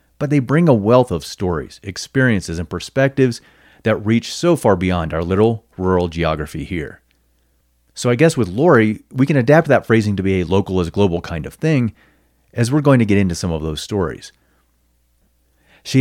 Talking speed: 185 wpm